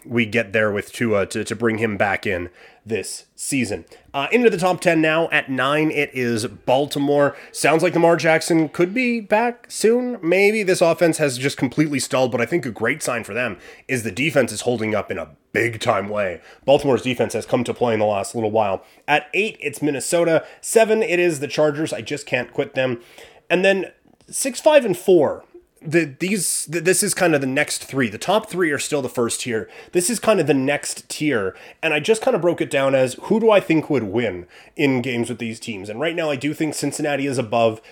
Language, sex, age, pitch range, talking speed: English, male, 30-49, 120-170 Hz, 225 wpm